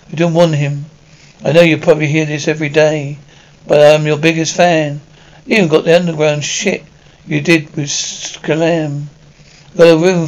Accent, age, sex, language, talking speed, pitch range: British, 60-79, male, English, 170 wpm, 150-175 Hz